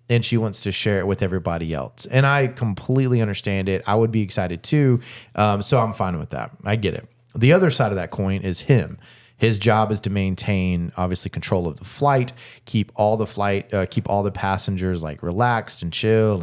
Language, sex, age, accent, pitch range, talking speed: English, male, 30-49, American, 95-120 Hz, 215 wpm